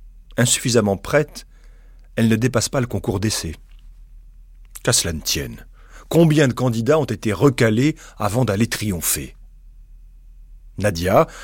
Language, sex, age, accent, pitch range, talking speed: French, male, 40-59, French, 85-120 Hz, 120 wpm